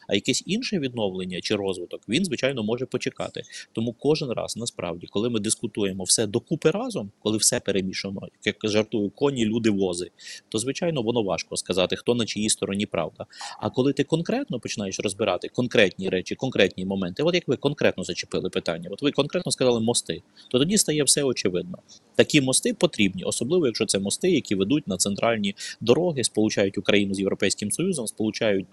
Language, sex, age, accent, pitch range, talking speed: Ukrainian, male, 20-39, native, 105-145 Hz, 175 wpm